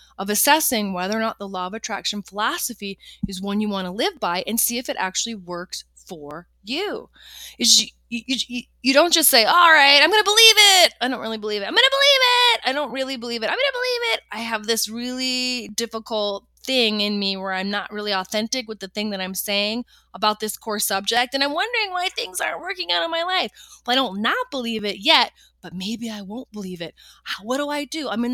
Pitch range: 185-245 Hz